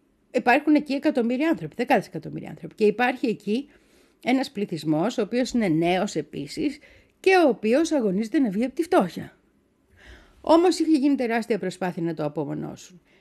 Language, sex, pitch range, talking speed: Greek, female, 185-295 Hz, 155 wpm